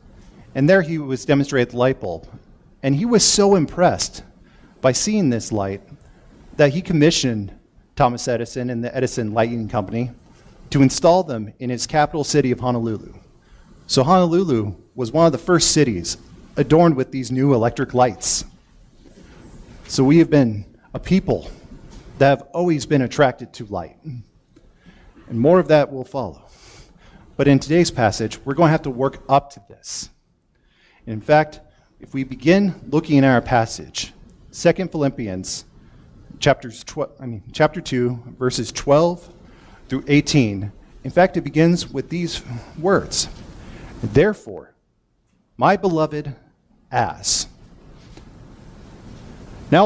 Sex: male